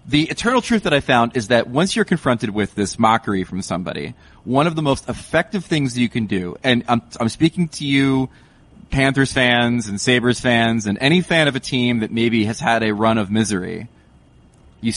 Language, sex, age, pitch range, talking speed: English, male, 30-49, 105-150 Hz, 205 wpm